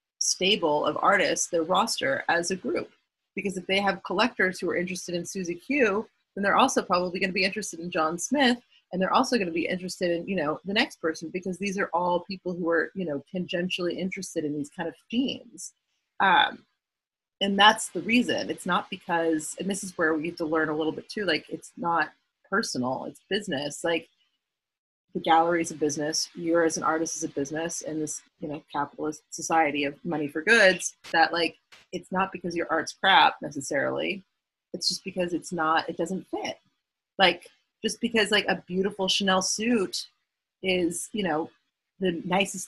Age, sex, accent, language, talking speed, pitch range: 30-49, female, American, English, 195 wpm, 165-195 Hz